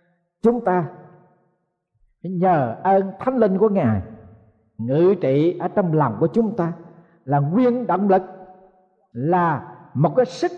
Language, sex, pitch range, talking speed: Vietnamese, male, 155-240 Hz, 135 wpm